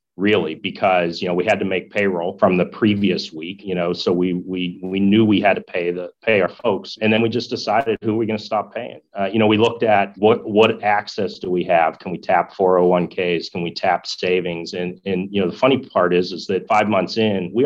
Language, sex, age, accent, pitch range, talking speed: English, male, 30-49, American, 90-100 Hz, 260 wpm